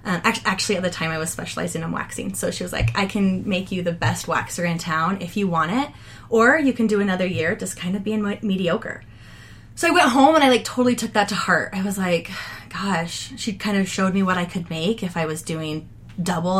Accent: American